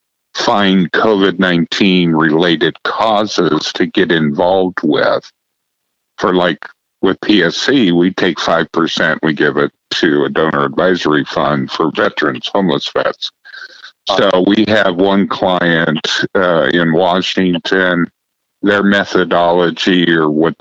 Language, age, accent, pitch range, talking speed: English, 50-69, American, 85-100 Hz, 115 wpm